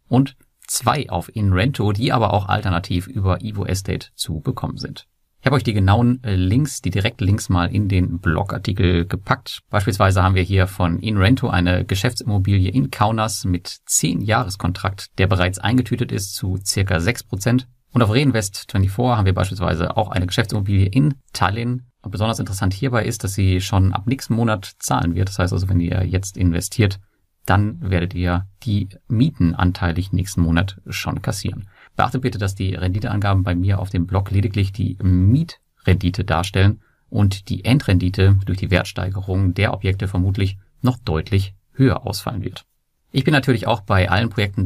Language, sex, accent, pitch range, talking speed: German, male, German, 90-115 Hz, 165 wpm